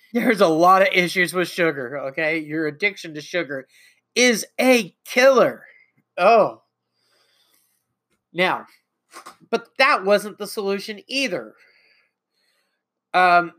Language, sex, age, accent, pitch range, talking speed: English, male, 30-49, American, 160-210 Hz, 105 wpm